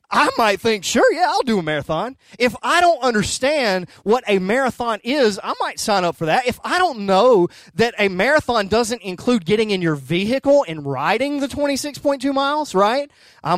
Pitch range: 155-220 Hz